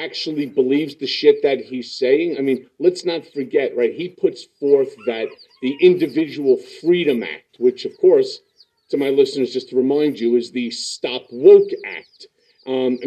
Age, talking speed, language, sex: 50-69, 170 wpm, English, male